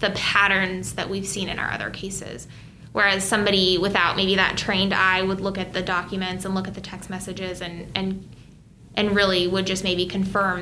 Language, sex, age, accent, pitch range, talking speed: English, female, 20-39, American, 185-210 Hz, 200 wpm